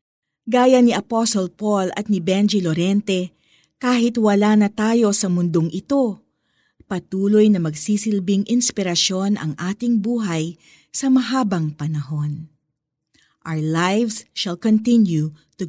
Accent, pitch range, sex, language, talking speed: native, 160-225 Hz, female, Filipino, 115 wpm